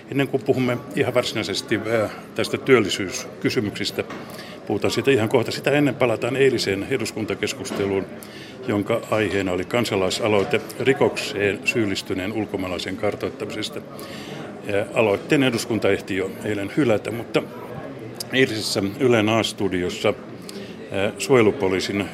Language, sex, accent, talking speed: Finnish, male, native, 95 wpm